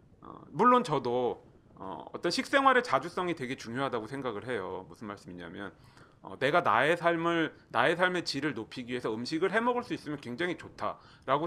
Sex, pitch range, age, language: male, 140-195 Hz, 30-49, Korean